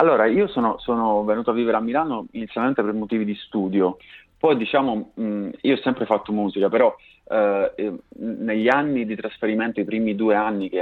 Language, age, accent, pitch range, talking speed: Italian, 30-49, native, 100-115 Hz, 185 wpm